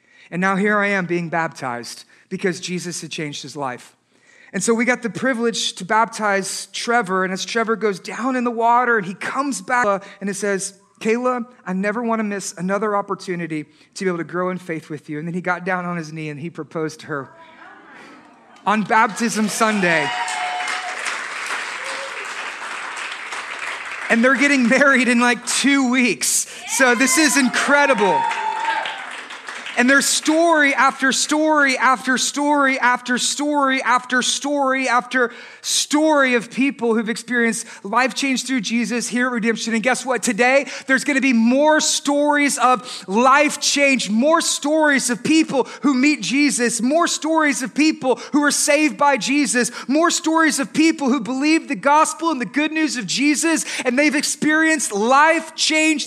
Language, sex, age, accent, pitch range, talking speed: English, male, 30-49, American, 210-285 Hz, 165 wpm